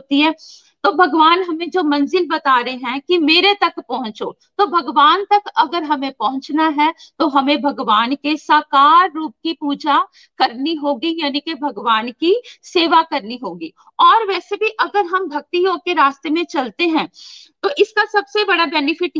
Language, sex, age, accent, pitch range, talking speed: Hindi, female, 50-69, native, 295-360 Hz, 170 wpm